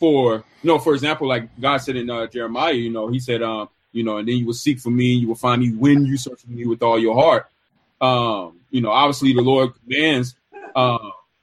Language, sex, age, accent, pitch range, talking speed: English, male, 20-39, American, 120-155 Hz, 240 wpm